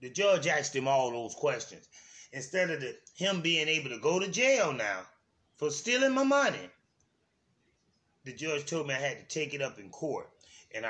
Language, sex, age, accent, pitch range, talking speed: English, male, 30-49, American, 140-215 Hz, 185 wpm